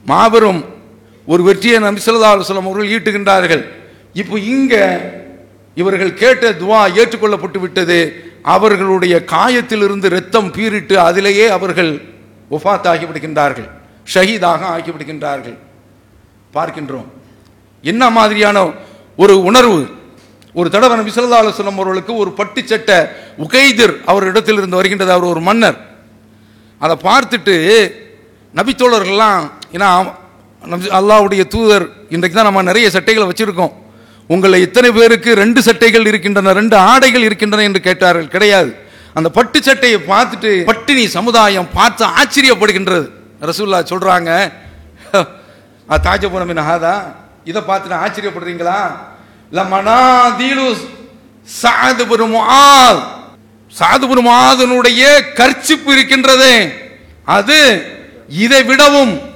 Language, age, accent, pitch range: English, 50-69, Indian, 170-230 Hz